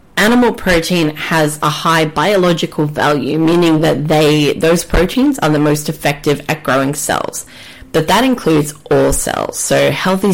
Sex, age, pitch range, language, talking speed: female, 20-39, 145-190 Hz, English, 145 wpm